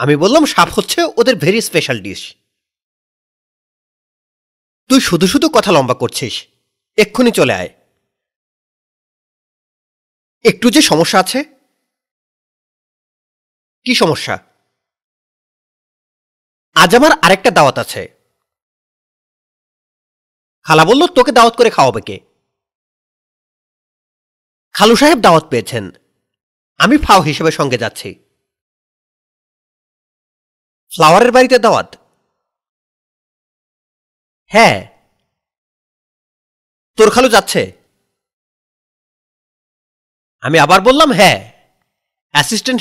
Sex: male